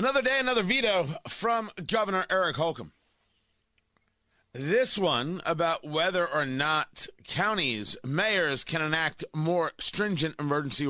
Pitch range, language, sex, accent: 110-160 Hz, English, male, American